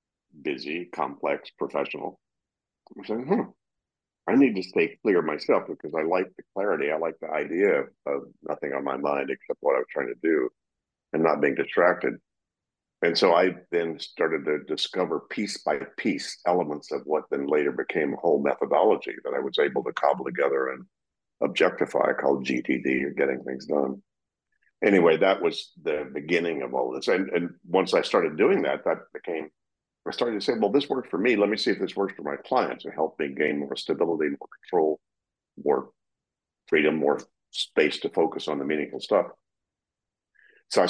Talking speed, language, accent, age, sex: 185 wpm, English, American, 50-69, male